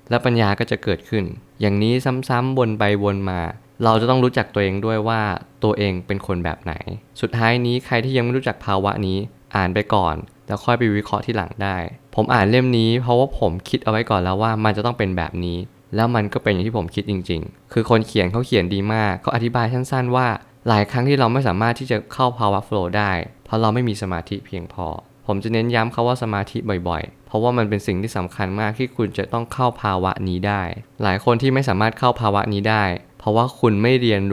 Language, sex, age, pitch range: Thai, male, 20-39, 100-120 Hz